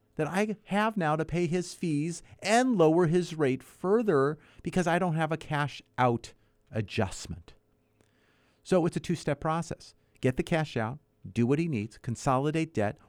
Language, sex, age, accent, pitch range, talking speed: English, male, 40-59, American, 105-160 Hz, 155 wpm